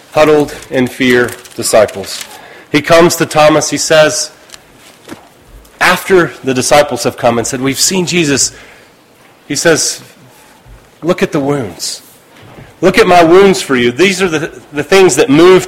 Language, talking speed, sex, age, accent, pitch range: English, 150 wpm, male, 40-59, American, 160-250 Hz